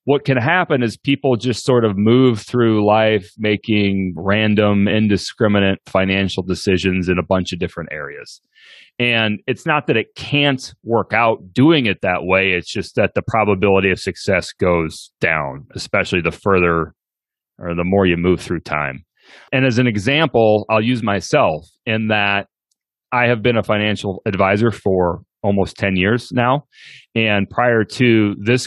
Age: 30-49